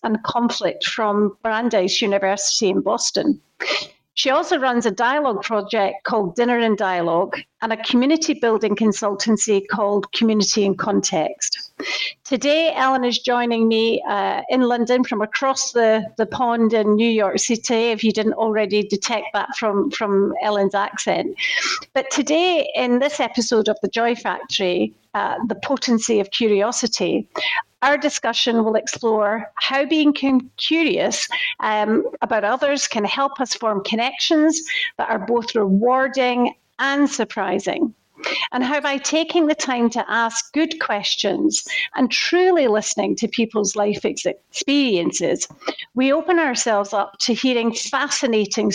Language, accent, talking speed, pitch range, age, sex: English, British, 140 wpm, 215-275 Hz, 50-69, female